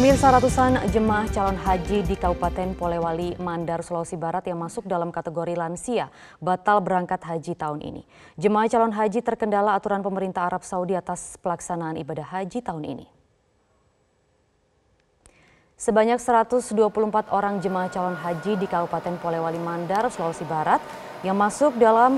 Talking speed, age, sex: 135 wpm, 20-39, female